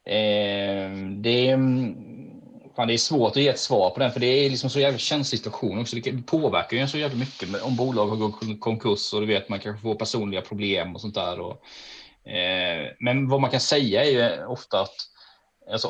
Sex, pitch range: male, 105-135 Hz